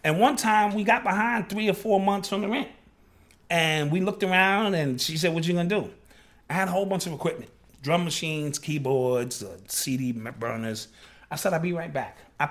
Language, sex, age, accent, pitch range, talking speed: English, male, 30-49, American, 140-200 Hz, 215 wpm